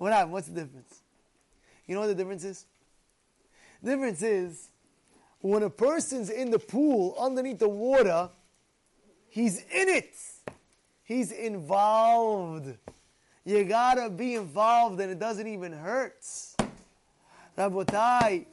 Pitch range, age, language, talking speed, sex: 195-265 Hz, 20-39, English, 120 wpm, male